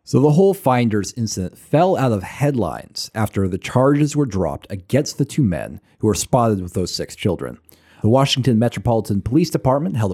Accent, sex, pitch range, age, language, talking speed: American, male, 105-145 Hz, 30-49, English, 185 wpm